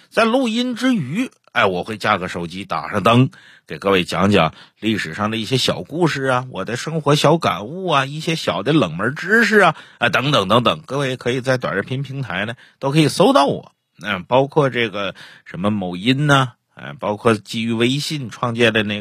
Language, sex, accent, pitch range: Chinese, male, native, 110-155 Hz